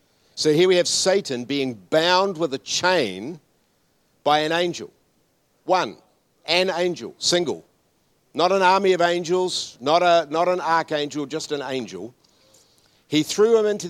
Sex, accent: male, Australian